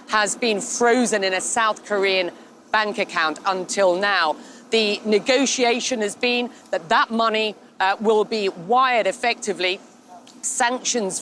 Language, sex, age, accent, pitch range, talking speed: English, female, 40-59, British, 210-260 Hz, 130 wpm